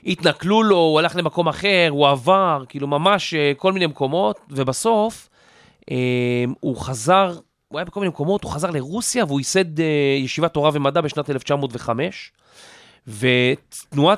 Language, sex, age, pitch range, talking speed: Hebrew, male, 30-49, 130-175 Hz, 135 wpm